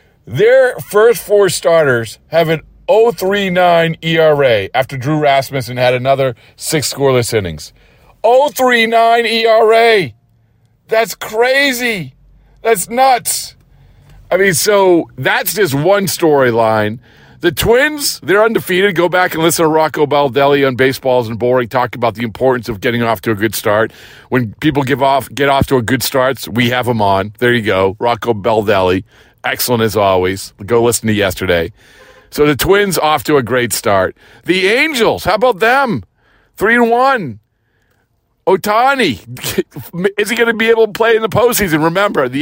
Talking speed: 160 wpm